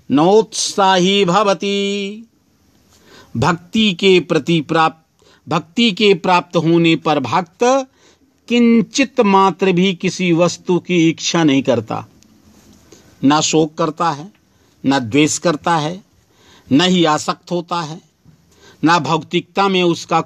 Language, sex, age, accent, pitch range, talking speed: Hindi, male, 50-69, native, 160-200 Hz, 110 wpm